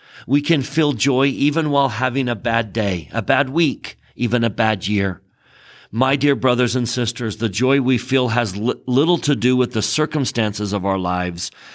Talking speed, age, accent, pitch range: 185 wpm, 50-69, American, 100-135 Hz